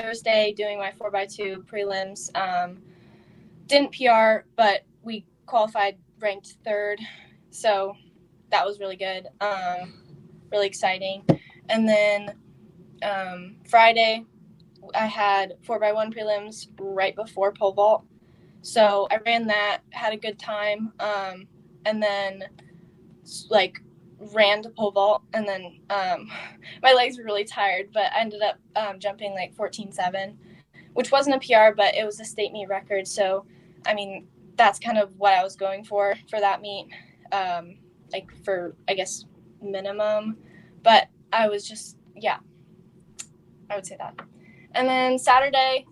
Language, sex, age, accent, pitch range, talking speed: English, female, 10-29, American, 190-215 Hz, 150 wpm